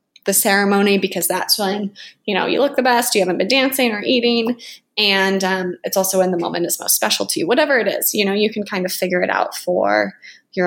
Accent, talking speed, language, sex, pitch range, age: American, 240 wpm, English, female, 180-240 Hz, 20-39